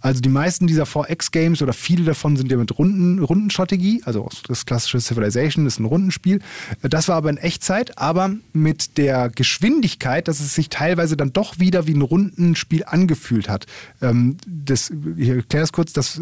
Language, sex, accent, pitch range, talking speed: German, male, German, 120-165 Hz, 180 wpm